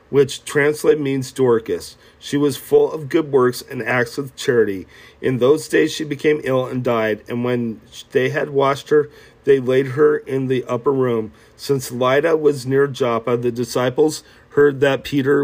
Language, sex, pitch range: English, male, 120-145 Hz